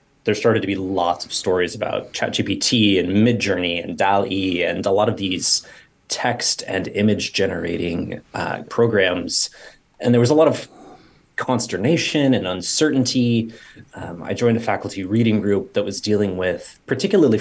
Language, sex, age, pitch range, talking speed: English, male, 30-49, 95-125 Hz, 155 wpm